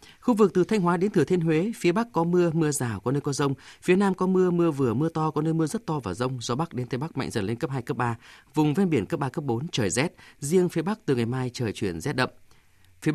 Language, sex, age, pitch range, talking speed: Vietnamese, male, 20-39, 125-170 Hz, 300 wpm